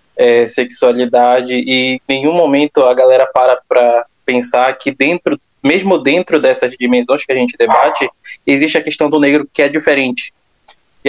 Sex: male